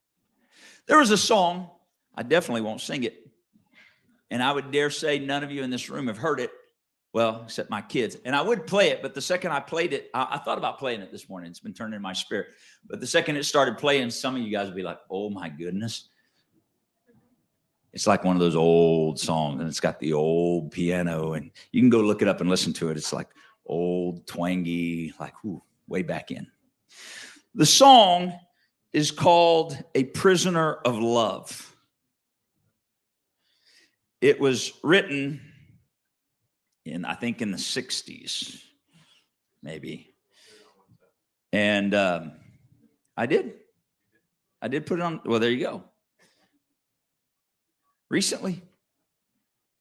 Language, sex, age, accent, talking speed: English, male, 50-69, American, 160 wpm